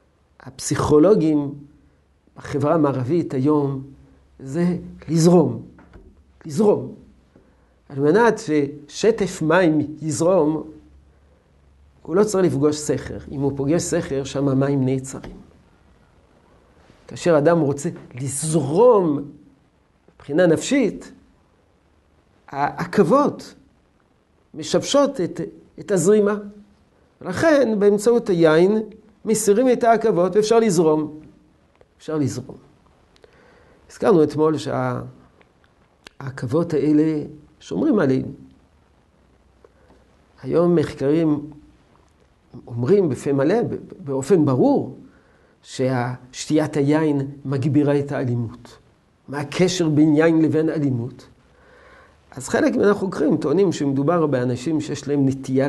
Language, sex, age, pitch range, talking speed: Hebrew, male, 50-69, 125-165 Hz, 85 wpm